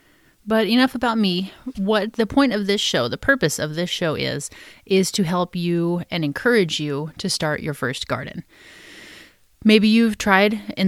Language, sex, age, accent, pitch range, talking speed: English, female, 30-49, American, 150-190 Hz, 175 wpm